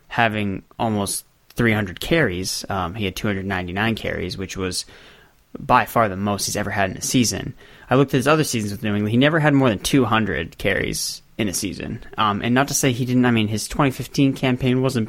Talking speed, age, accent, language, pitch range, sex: 210 wpm, 20-39, American, English, 95-120 Hz, male